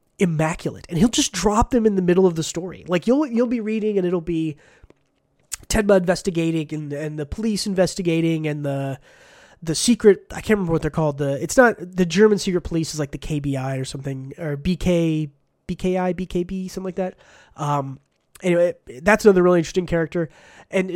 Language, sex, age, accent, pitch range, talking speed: English, male, 20-39, American, 160-205 Hz, 185 wpm